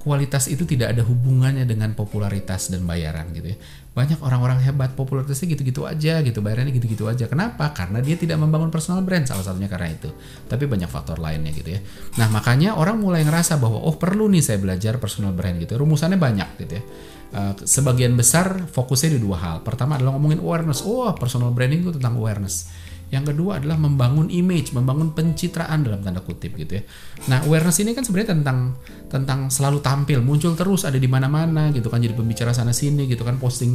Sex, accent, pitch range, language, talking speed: male, native, 105-150 Hz, Indonesian, 185 wpm